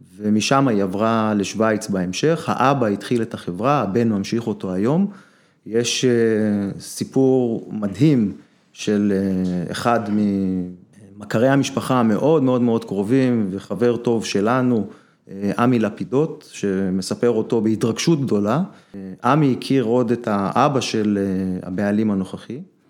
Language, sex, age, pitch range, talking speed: Hebrew, male, 30-49, 105-135 Hz, 105 wpm